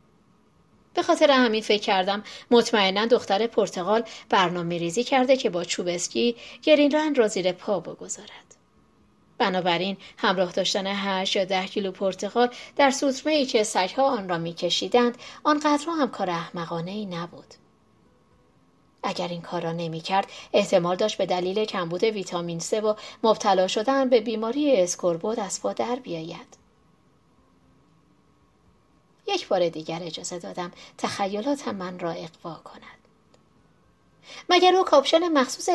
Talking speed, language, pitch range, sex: 135 wpm, Persian, 180-260 Hz, female